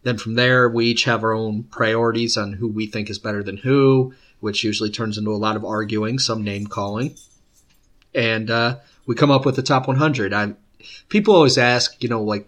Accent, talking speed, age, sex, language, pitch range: American, 205 wpm, 30-49, male, English, 105-120 Hz